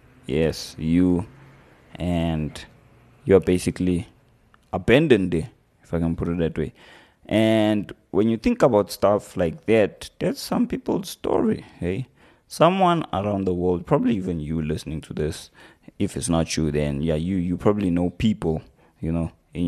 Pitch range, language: 85-105 Hz, English